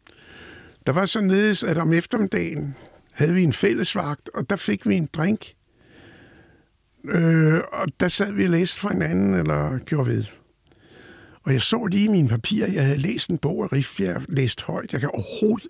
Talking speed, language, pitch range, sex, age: 180 wpm, Danish, 135-200 Hz, male, 60-79